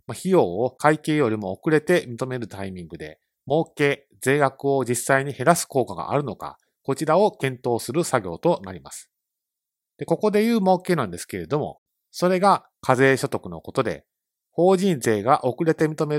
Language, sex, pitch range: Japanese, male, 120-160 Hz